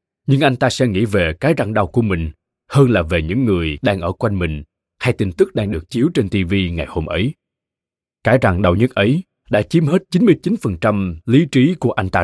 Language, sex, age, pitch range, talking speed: Vietnamese, male, 20-39, 85-130 Hz, 220 wpm